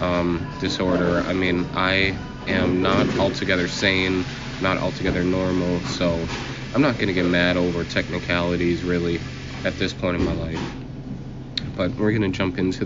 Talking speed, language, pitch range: 160 wpm, English, 85-95 Hz